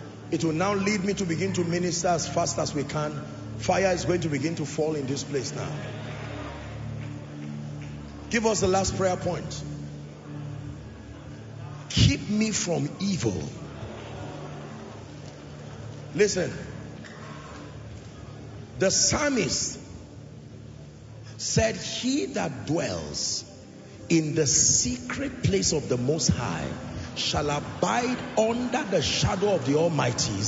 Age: 50-69